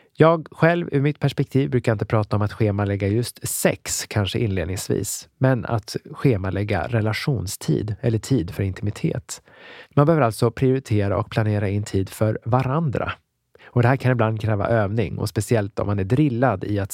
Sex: male